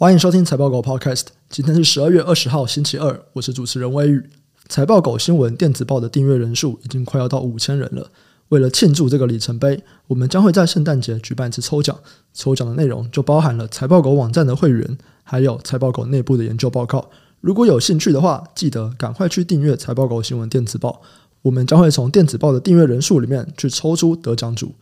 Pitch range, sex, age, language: 130-160 Hz, male, 20-39, Chinese